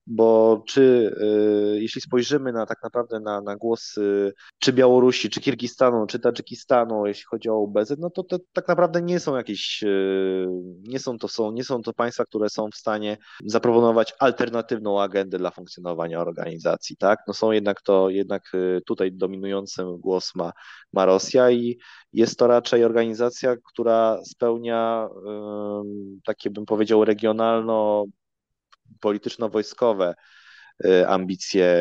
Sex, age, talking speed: male, 20-39, 140 wpm